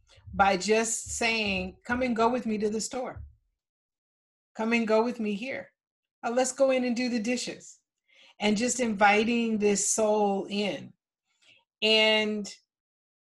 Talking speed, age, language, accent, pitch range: 140 wpm, 40-59, English, American, 185-220 Hz